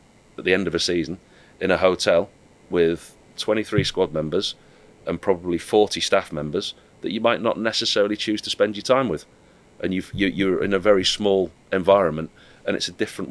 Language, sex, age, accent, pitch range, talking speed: English, male, 30-49, British, 85-105 Hz, 190 wpm